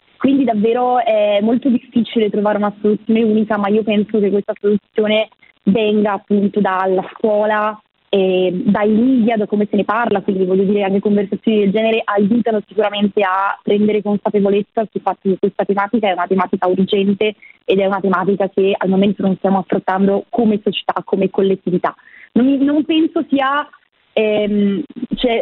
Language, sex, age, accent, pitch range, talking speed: Italian, female, 20-39, native, 200-230 Hz, 170 wpm